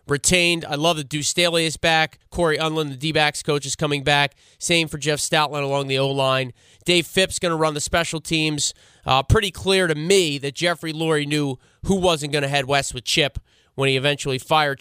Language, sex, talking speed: English, male, 210 wpm